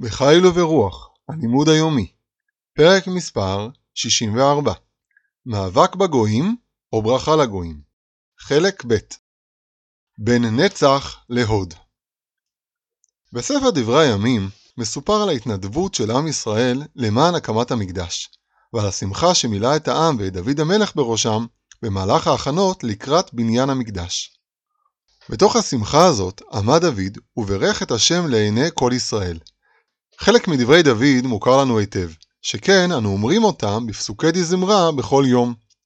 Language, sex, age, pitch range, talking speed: Hebrew, male, 30-49, 110-160 Hz, 105 wpm